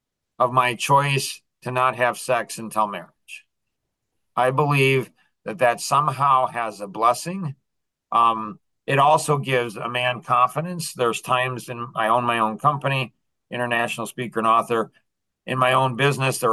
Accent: American